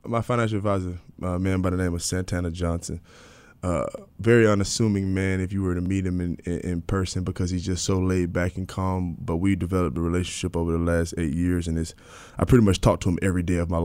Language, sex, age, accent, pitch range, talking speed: English, male, 20-39, American, 85-95 Hz, 240 wpm